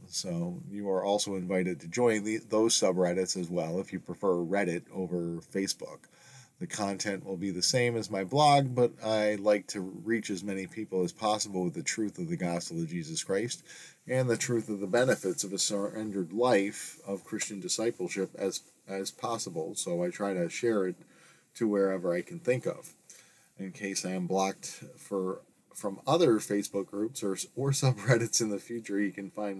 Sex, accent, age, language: male, American, 40-59, English